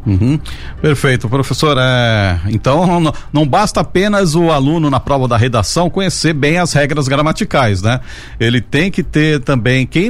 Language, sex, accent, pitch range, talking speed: Portuguese, male, Brazilian, 110-150 Hz, 150 wpm